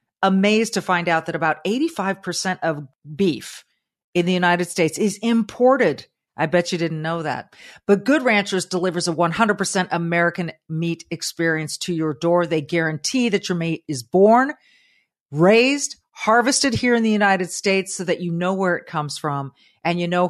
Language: English